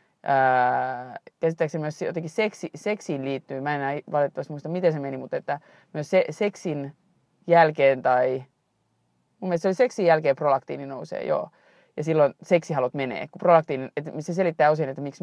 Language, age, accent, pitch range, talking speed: Finnish, 30-49, native, 135-175 Hz, 165 wpm